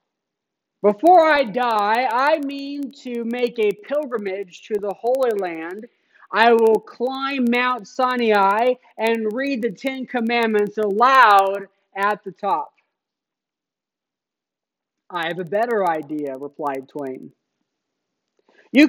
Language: English